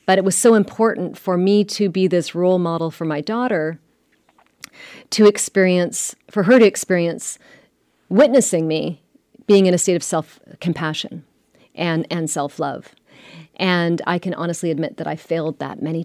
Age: 40-59